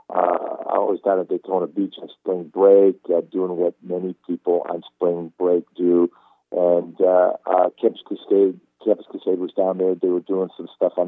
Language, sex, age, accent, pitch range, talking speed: English, male, 50-69, American, 90-115 Hz, 190 wpm